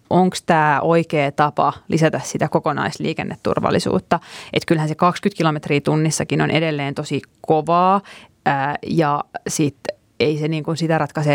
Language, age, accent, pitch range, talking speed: Finnish, 20-39, native, 150-175 Hz, 130 wpm